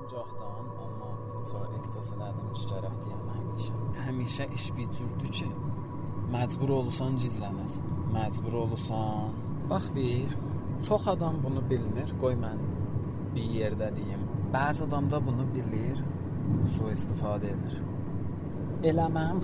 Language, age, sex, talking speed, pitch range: Persian, 30-49, male, 115 wpm, 110-130 Hz